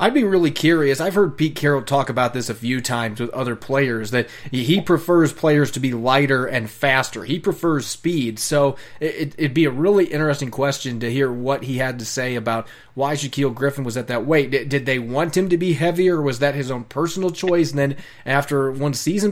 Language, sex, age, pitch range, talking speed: English, male, 30-49, 130-170 Hz, 215 wpm